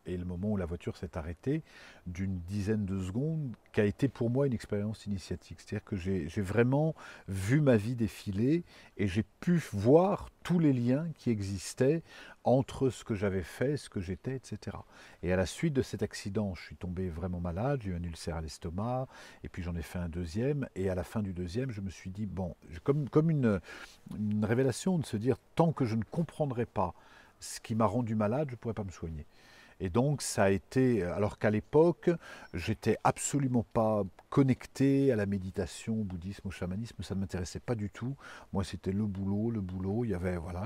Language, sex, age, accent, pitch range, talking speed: French, male, 50-69, French, 95-125 Hz, 210 wpm